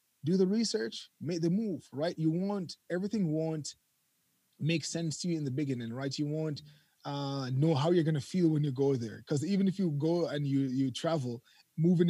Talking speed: 205 wpm